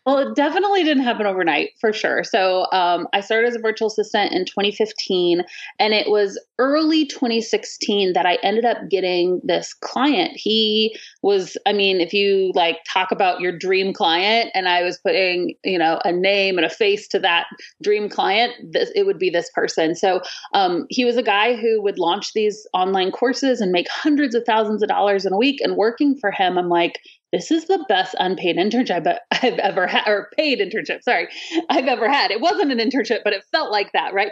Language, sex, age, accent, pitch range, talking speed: English, female, 30-49, American, 195-290 Hz, 205 wpm